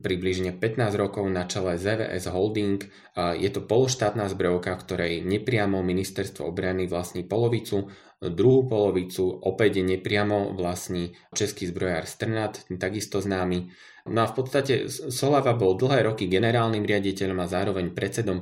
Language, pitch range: Slovak, 90-105 Hz